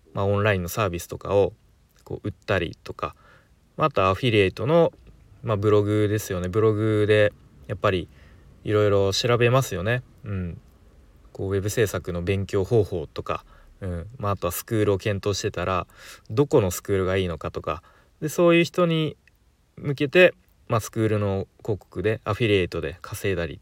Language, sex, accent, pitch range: Japanese, male, native, 95-125 Hz